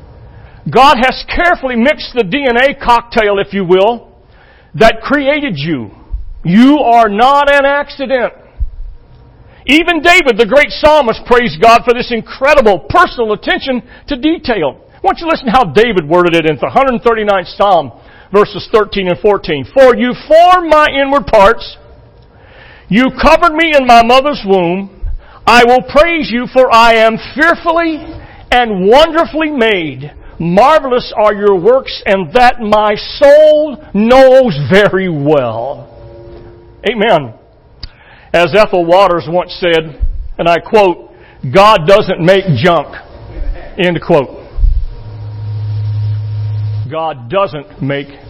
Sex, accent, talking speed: male, American, 130 wpm